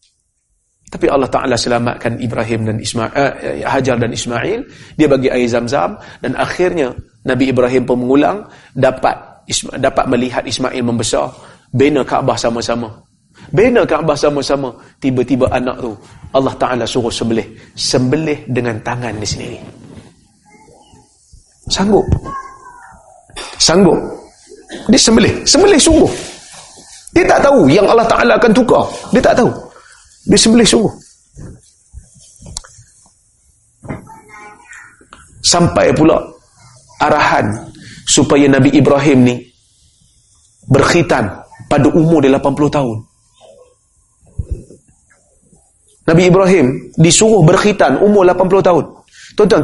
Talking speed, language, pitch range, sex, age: 105 wpm, Malay, 120-155 Hz, male, 30-49